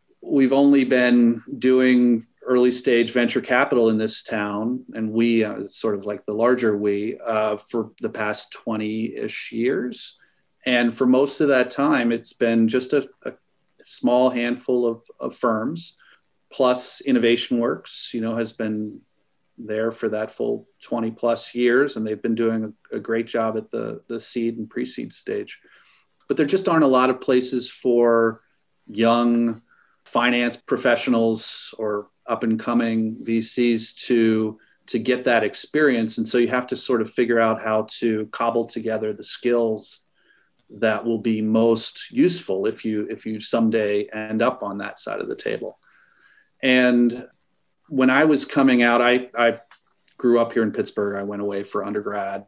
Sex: male